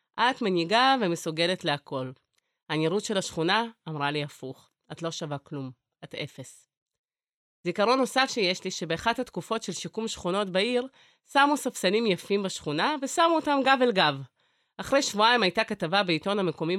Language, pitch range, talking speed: Hebrew, 165-235 Hz, 145 wpm